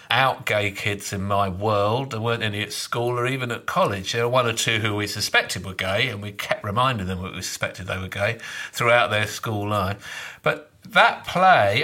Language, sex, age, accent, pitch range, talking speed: English, male, 50-69, British, 110-155 Hz, 220 wpm